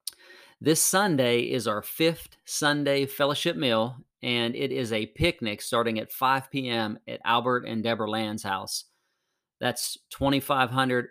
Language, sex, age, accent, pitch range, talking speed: English, male, 40-59, American, 120-145 Hz, 135 wpm